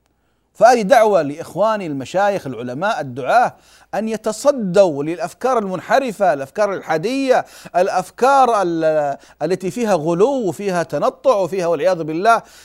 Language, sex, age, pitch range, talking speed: Arabic, male, 40-59, 135-215 Hz, 100 wpm